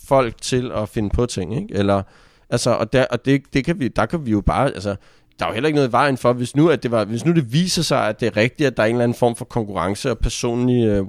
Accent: native